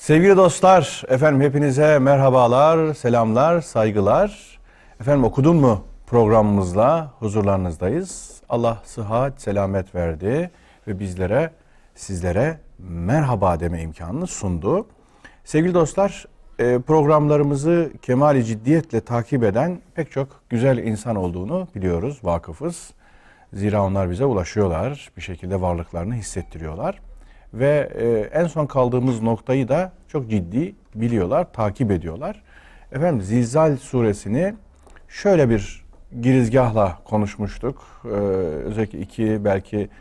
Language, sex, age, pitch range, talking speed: Turkish, male, 40-59, 100-140 Hz, 100 wpm